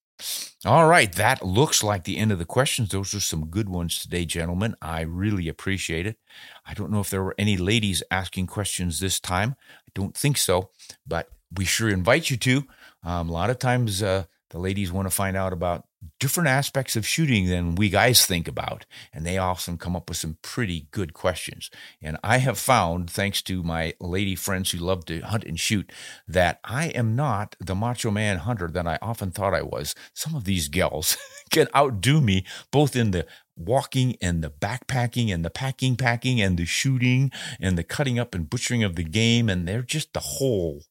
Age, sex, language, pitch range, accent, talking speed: 50-69, male, English, 90-120 Hz, American, 205 wpm